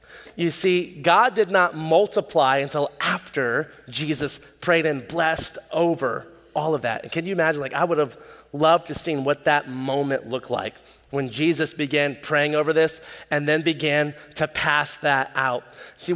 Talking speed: 170 wpm